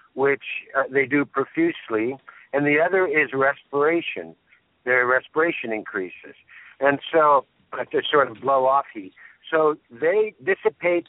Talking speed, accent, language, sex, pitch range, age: 130 wpm, American, English, male, 125-165 Hz, 60-79